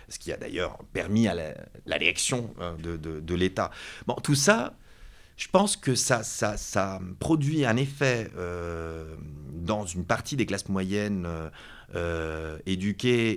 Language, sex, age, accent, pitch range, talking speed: French, male, 30-49, French, 90-135 Hz, 155 wpm